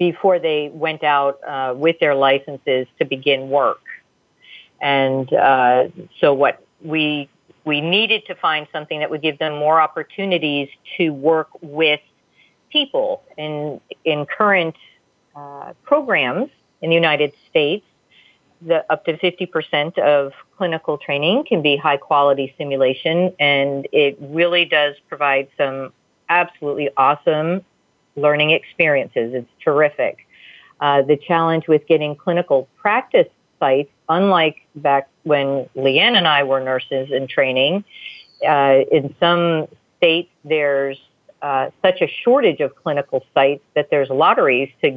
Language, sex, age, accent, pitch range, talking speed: English, female, 40-59, American, 140-165 Hz, 130 wpm